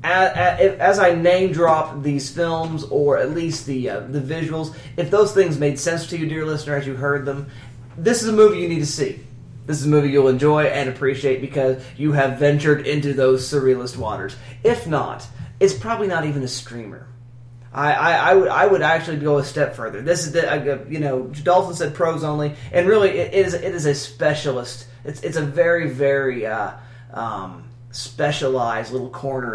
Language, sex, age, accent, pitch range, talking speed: English, male, 30-49, American, 125-155 Hz, 195 wpm